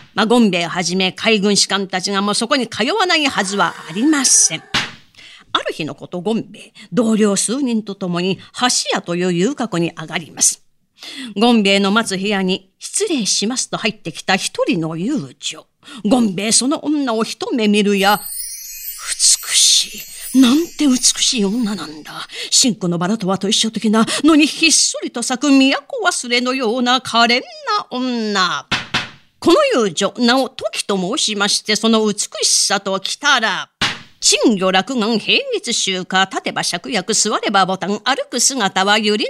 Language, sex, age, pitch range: Japanese, female, 40-59, 190-265 Hz